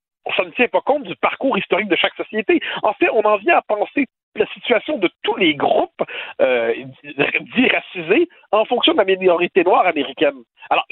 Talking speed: 200 wpm